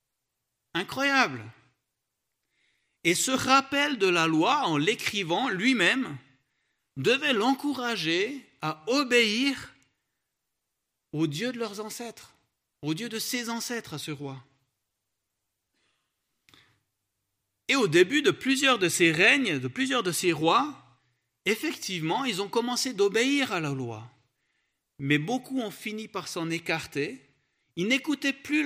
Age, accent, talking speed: 50-69, French, 120 wpm